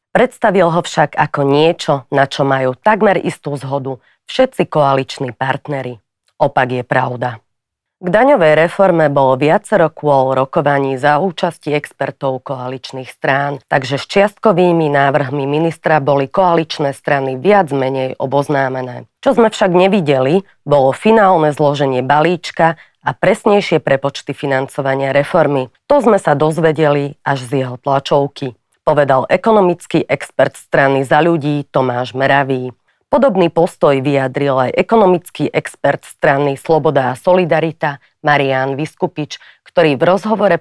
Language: Slovak